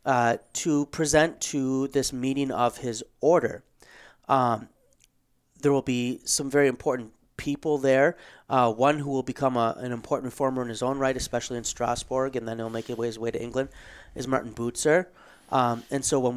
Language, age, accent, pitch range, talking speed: English, 30-49, American, 120-140 Hz, 175 wpm